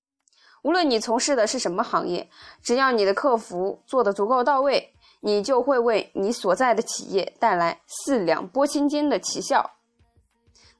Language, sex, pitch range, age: Chinese, female, 195-285 Hz, 20-39